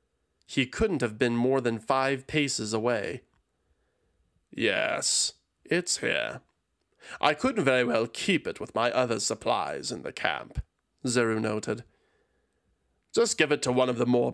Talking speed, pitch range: 145 wpm, 120-160 Hz